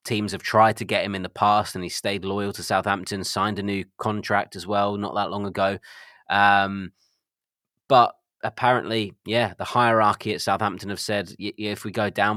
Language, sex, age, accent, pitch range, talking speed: English, male, 20-39, British, 95-105 Hz, 195 wpm